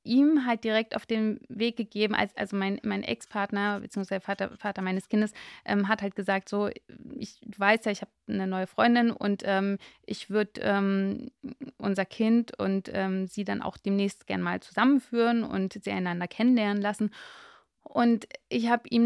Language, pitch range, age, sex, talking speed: German, 195-230 Hz, 30-49, female, 170 wpm